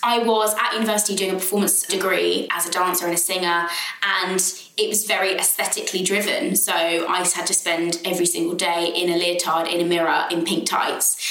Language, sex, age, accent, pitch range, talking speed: English, female, 20-39, British, 175-210 Hz, 195 wpm